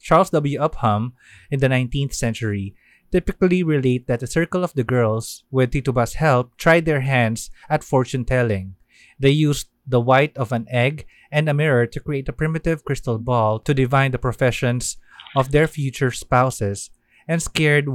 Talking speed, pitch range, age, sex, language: 165 wpm, 120-145 Hz, 20-39, male, Filipino